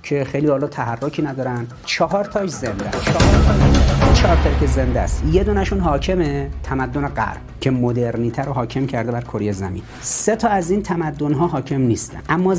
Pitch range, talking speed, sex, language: 115-165 Hz, 165 wpm, male, Persian